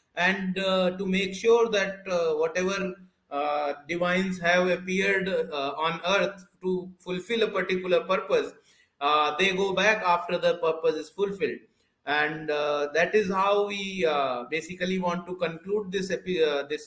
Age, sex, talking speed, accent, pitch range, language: 30-49, male, 155 wpm, native, 150-190 Hz, Hindi